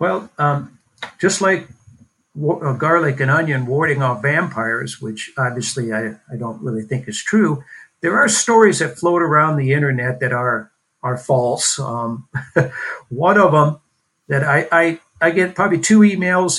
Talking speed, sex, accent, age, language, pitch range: 150 wpm, male, American, 60-79, English, 130-175 Hz